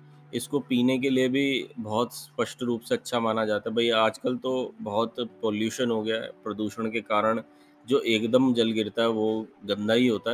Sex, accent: male, native